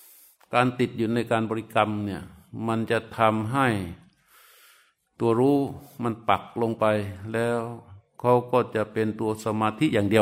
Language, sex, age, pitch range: Thai, male, 60-79, 110-130 Hz